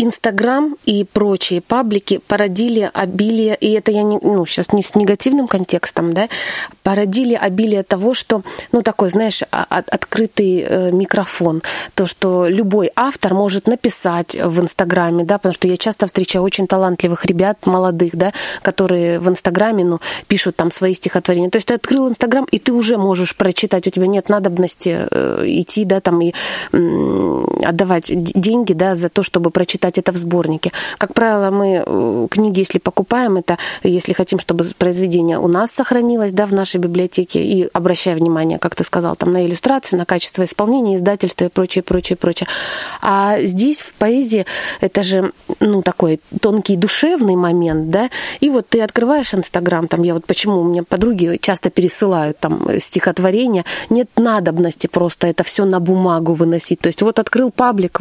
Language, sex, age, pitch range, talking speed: Russian, female, 30-49, 180-215 Hz, 165 wpm